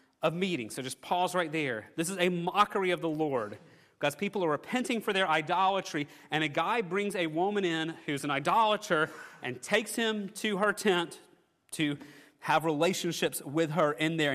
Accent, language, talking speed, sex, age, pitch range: American, English, 185 wpm, male, 30-49, 155-200 Hz